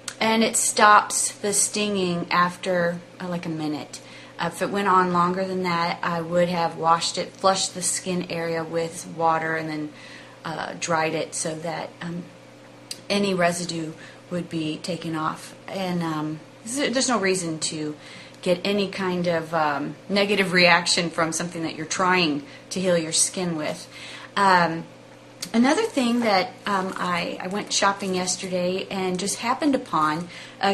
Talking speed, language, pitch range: 155 wpm, English, 170-200 Hz